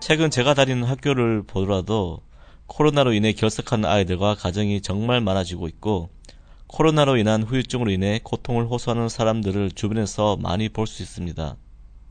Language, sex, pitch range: Korean, male, 95-120 Hz